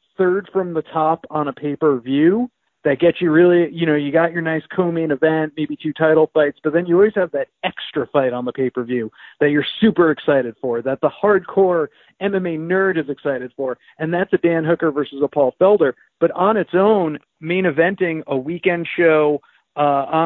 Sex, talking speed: male, 195 wpm